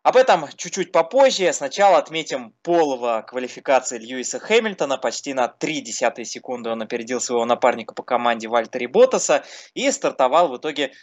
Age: 20-39